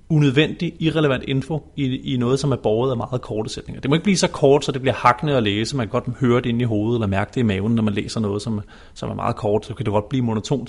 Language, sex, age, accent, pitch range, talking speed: Danish, male, 30-49, native, 120-145 Hz, 300 wpm